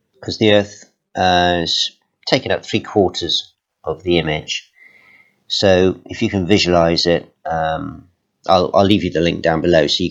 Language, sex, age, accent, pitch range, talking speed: English, male, 40-59, British, 85-105 Hz, 165 wpm